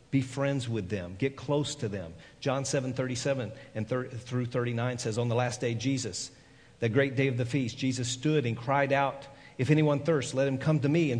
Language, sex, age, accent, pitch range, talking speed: English, male, 50-69, American, 120-150 Hz, 225 wpm